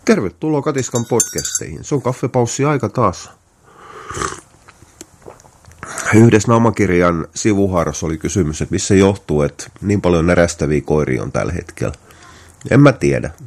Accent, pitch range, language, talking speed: native, 75-110 Hz, Finnish, 120 wpm